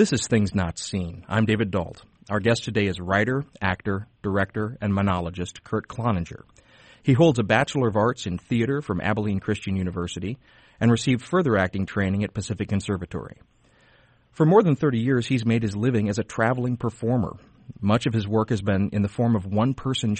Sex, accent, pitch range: male, American, 100-125 Hz